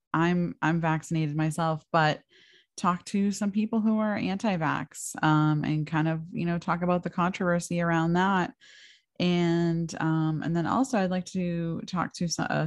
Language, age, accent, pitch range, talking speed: English, 20-39, American, 160-190 Hz, 165 wpm